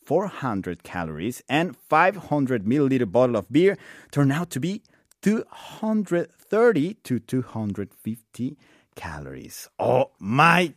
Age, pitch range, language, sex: 30-49, 125-195 Hz, Korean, male